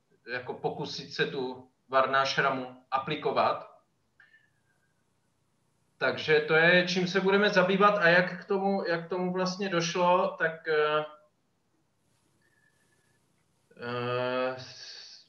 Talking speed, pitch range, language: 100 wpm, 135-160 Hz, Czech